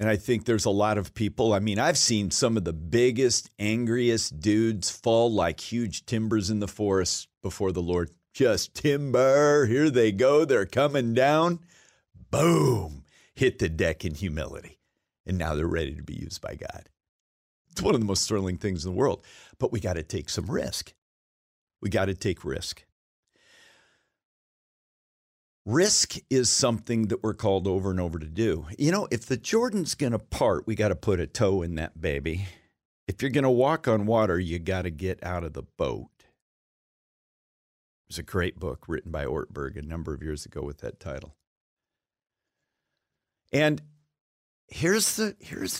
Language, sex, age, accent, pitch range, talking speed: English, male, 50-69, American, 85-120 Hz, 180 wpm